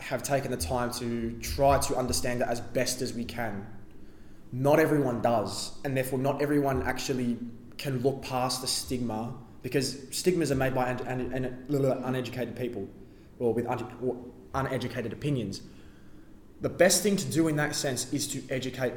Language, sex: English, male